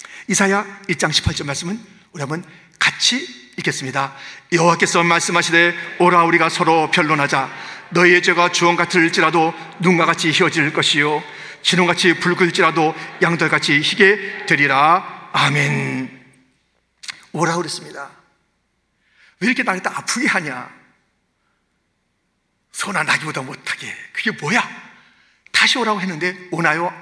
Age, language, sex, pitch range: 40-59, Korean, male, 155-210 Hz